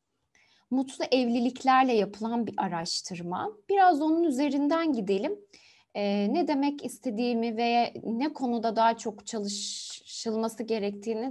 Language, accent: Turkish, native